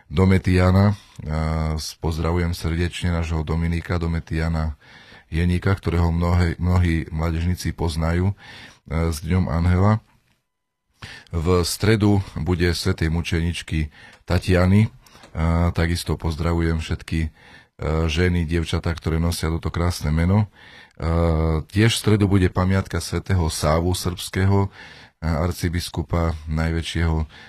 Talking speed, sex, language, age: 90 wpm, male, Slovak, 40-59